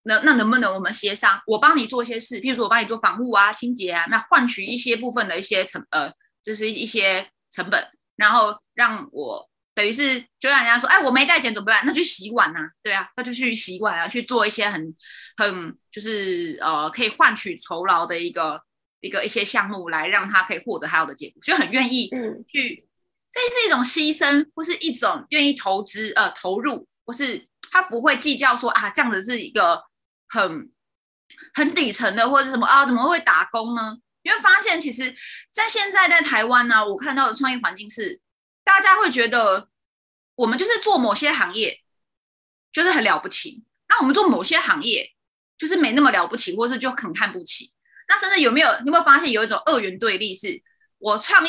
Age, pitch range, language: 20-39, 220-310 Hz, Chinese